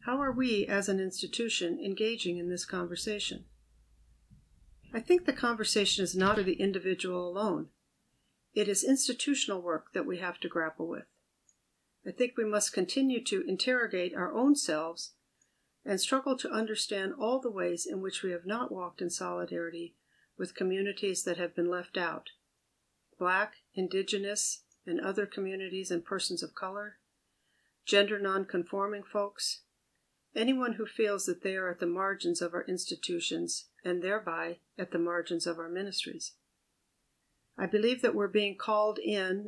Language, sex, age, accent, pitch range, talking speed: English, female, 50-69, American, 175-215 Hz, 155 wpm